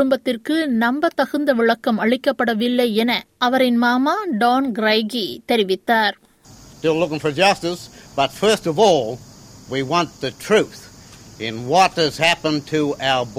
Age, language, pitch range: 60-79, Tamil, 215-255 Hz